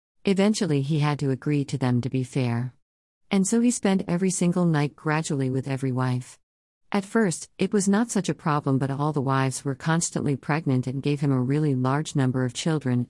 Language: English